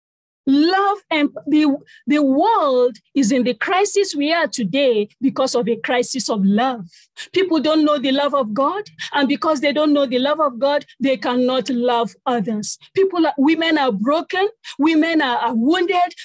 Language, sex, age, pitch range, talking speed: English, female, 40-59, 245-320 Hz, 170 wpm